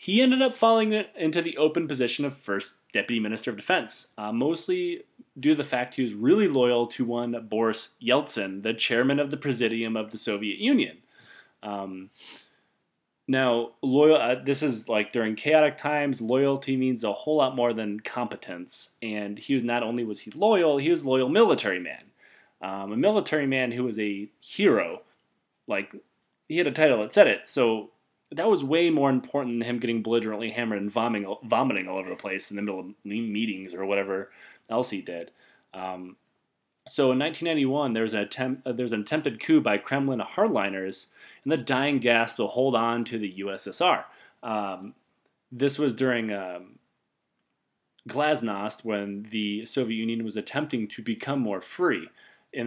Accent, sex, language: American, male, English